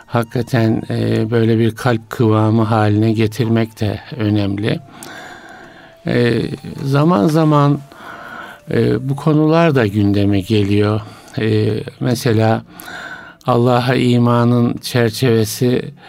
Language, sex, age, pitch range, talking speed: Turkish, male, 60-79, 115-130 Hz, 75 wpm